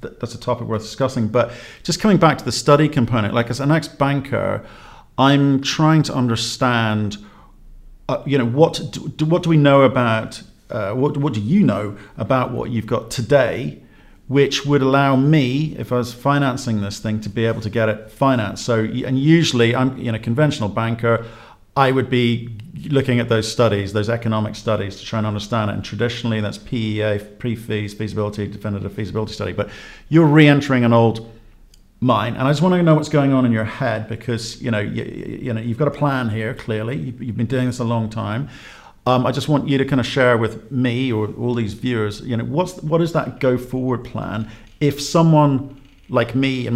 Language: English